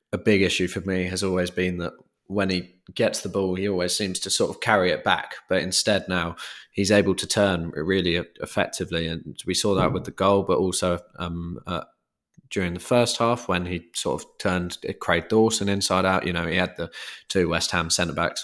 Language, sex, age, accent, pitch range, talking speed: English, male, 20-39, British, 85-90 Hz, 210 wpm